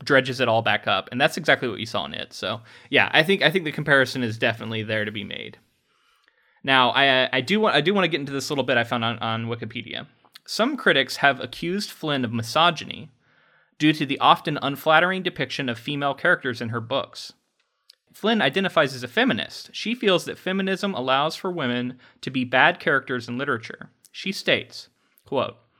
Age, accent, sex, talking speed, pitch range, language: 20-39, American, male, 200 wpm, 130-175 Hz, English